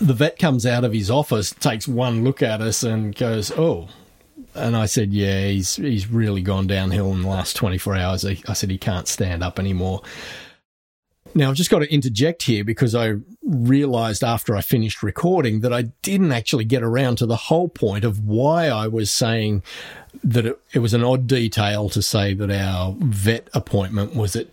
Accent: Australian